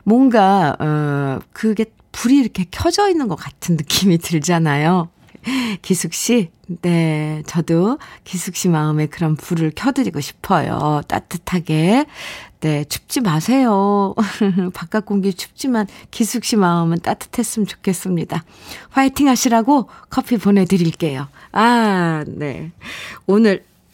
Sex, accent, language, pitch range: female, native, Korean, 155-225 Hz